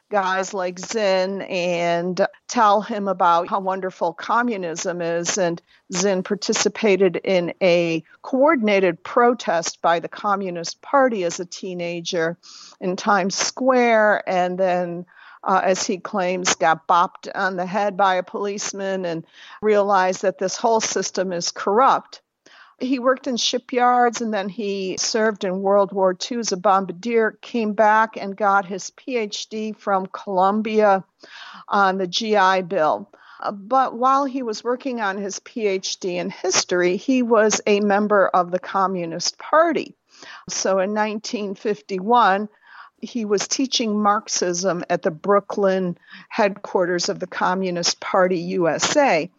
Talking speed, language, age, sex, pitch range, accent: 135 wpm, English, 50-69, female, 185-220 Hz, American